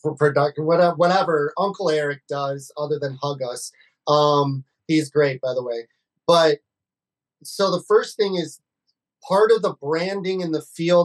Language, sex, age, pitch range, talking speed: English, male, 30-49, 150-180 Hz, 155 wpm